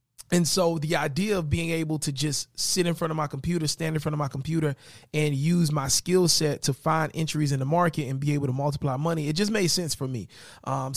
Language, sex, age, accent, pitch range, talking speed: English, male, 30-49, American, 140-170 Hz, 245 wpm